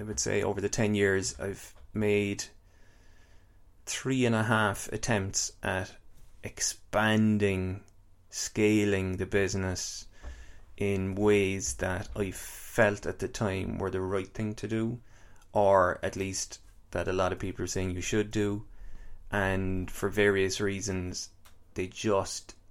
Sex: male